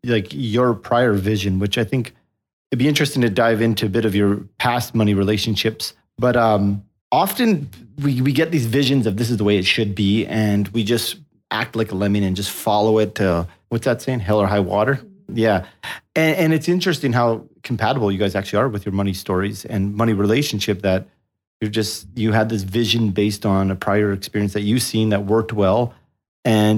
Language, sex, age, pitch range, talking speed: English, male, 30-49, 100-125 Hz, 205 wpm